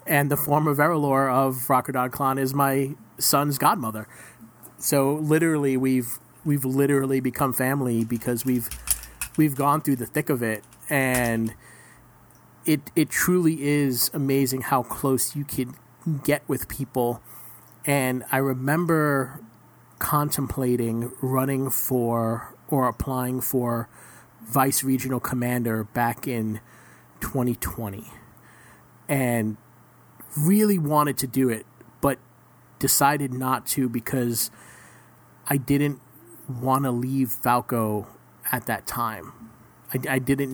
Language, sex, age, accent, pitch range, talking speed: English, male, 40-59, American, 120-140 Hz, 115 wpm